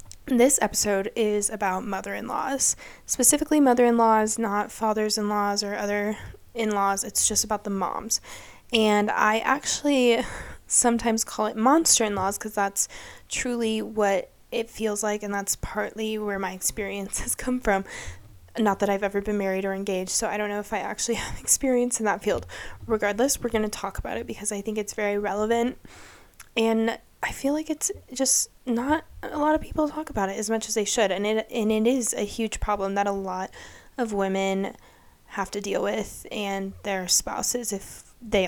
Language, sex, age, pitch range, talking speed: English, female, 20-39, 200-235 Hz, 180 wpm